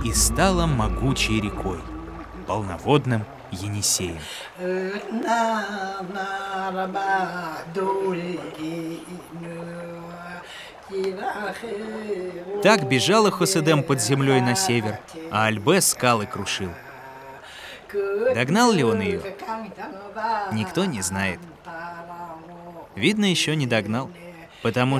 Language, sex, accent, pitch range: Russian, male, native, 145-195 Hz